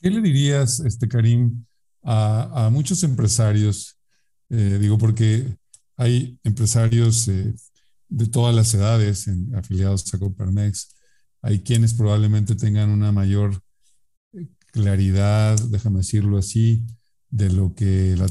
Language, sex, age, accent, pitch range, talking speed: Spanish, male, 50-69, Mexican, 105-125 Hz, 120 wpm